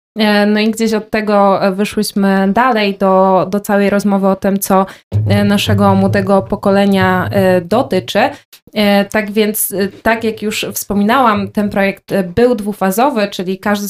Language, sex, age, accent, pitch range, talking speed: Polish, female, 20-39, native, 190-215 Hz, 130 wpm